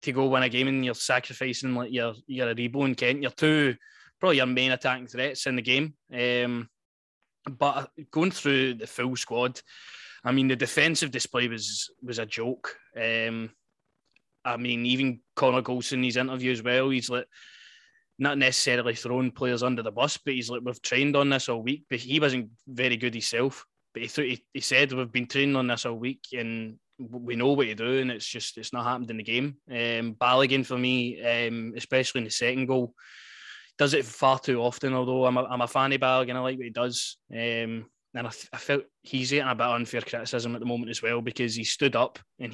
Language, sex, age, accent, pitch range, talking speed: English, male, 20-39, British, 120-130 Hz, 215 wpm